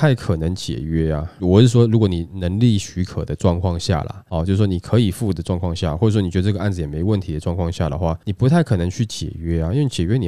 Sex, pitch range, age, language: male, 85-110 Hz, 20-39, Chinese